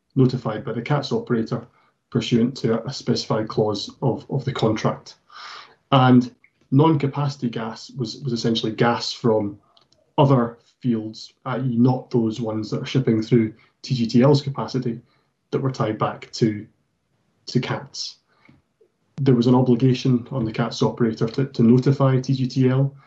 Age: 20-39